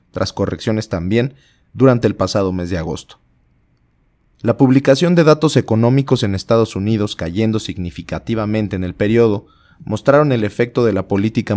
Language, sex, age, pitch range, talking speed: Spanish, male, 30-49, 95-115 Hz, 145 wpm